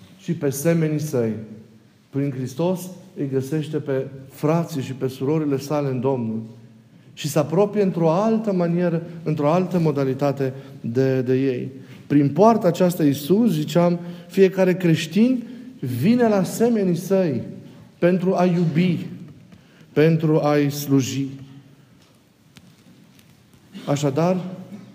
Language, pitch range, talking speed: Romanian, 145-200 Hz, 110 wpm